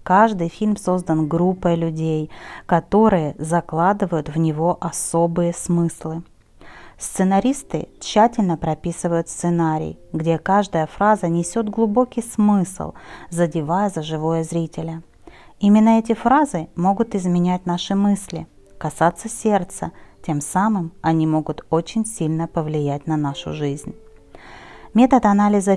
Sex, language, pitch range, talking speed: female, Russian, 160-205 Hz, 105 wpm